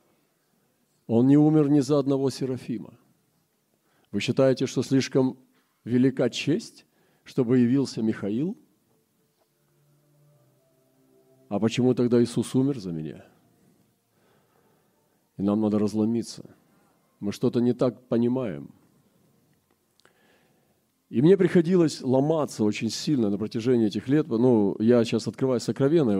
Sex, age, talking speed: male, 40-59, 110 wpm